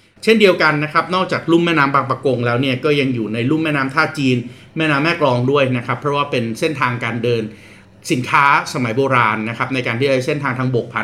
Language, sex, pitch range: Thai, male, 120-145 Hz